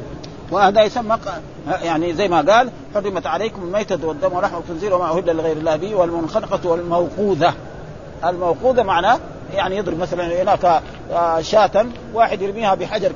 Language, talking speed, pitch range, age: Arabic, 130 wpm, 165-210 Hz, 50-69